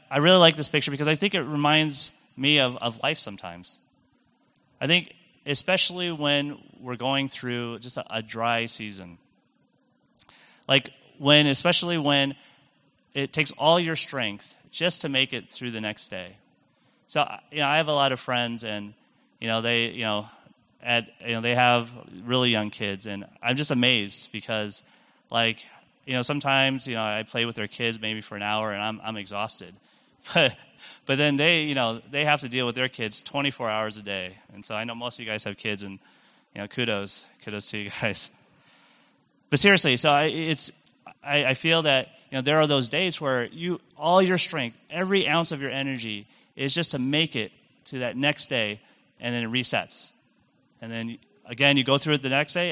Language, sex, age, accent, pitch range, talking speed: English, male, 30-49, American, 115-150 Hz, 195 wpm